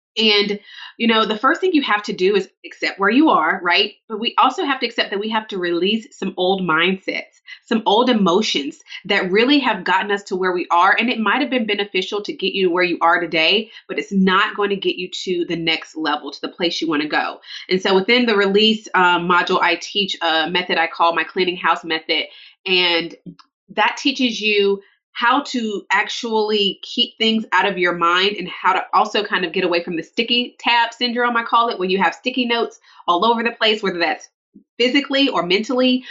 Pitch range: 180-235 Hz